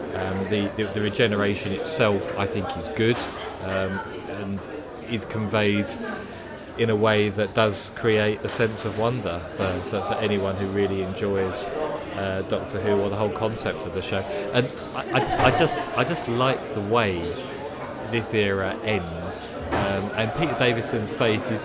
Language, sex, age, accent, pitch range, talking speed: English, male, 30-49, British, 100-115 Hz, 165 wpm